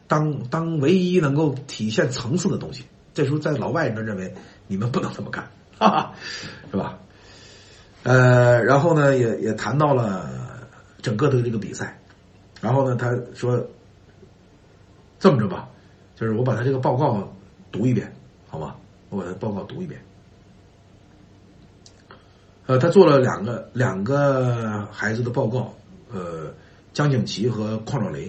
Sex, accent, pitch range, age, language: male, native, 100-155 Hz, 60-79, Chinese